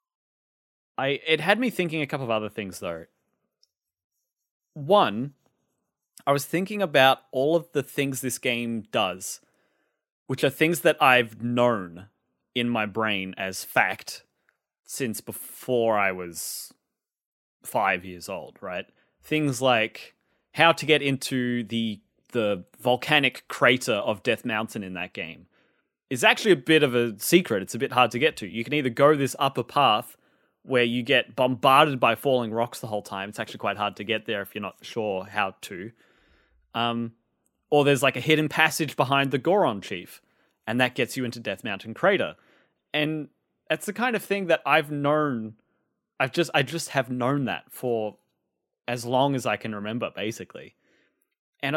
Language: English